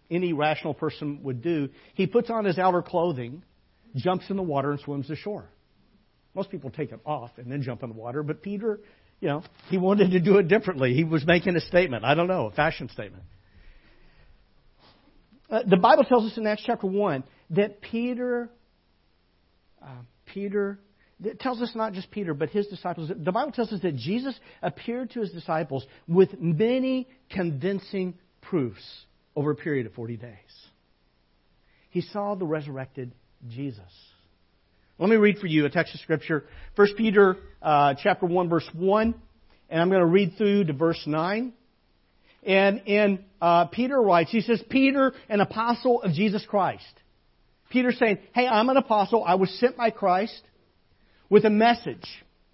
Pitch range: 145-210 Hz